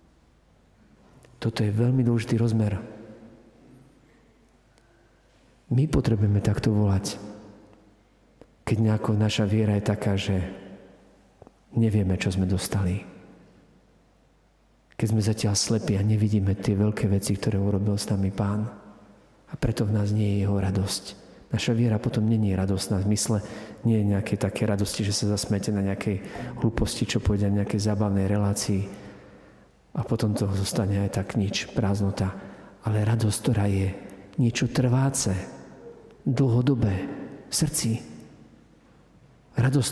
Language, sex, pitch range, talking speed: Slovak, male, 100-120 Hz, 130 wpm